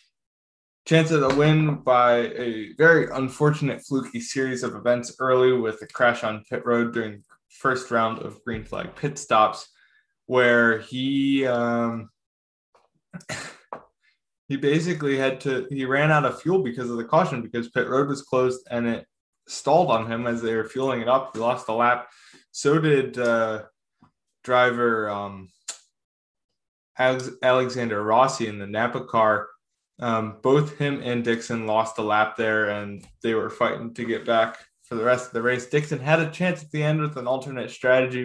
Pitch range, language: 115-135 Hz, English